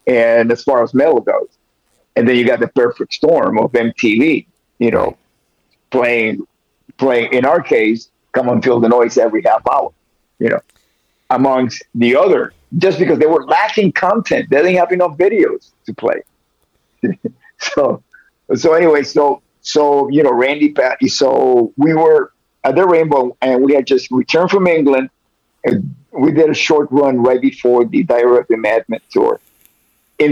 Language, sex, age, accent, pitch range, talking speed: English, male, 50-69, American, 125-200 Hz, 165 wpm